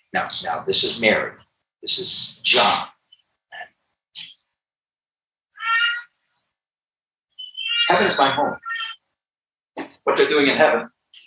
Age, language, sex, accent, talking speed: 50-69, English, male, American, 90 wpm